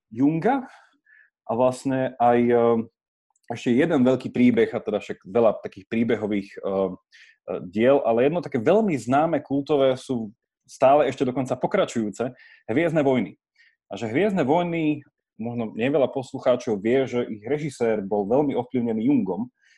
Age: 30-49